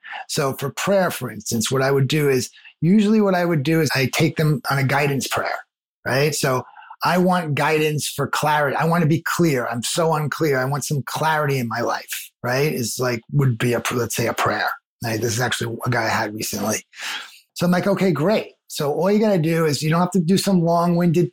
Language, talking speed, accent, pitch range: English, 230 wpm, American, 135-175 Hz